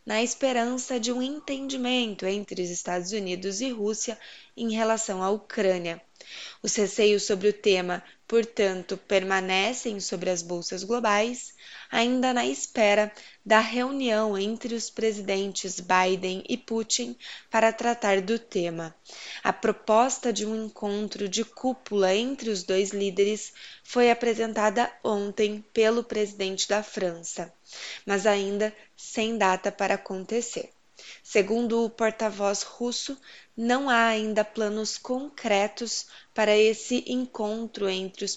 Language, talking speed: Portuguese, 125 wpm